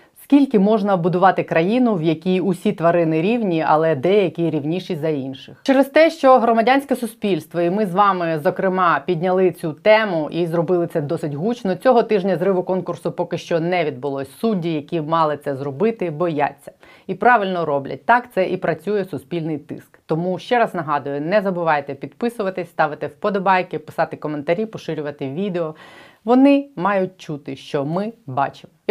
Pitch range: 150-190 Hz